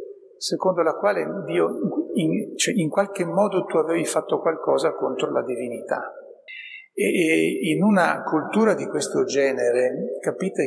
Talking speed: 140 wpm